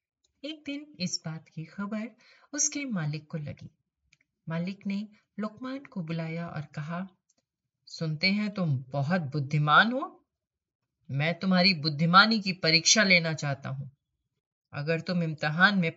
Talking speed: 130 wpm